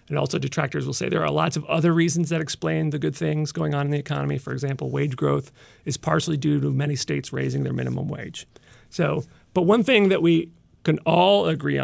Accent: American